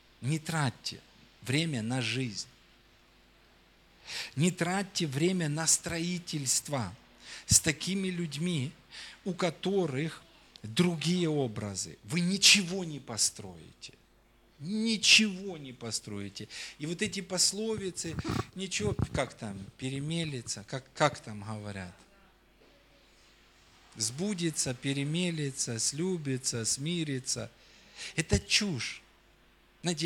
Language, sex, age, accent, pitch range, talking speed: Russian, male, 50-69, native, 120-170 Hz, 85 wpm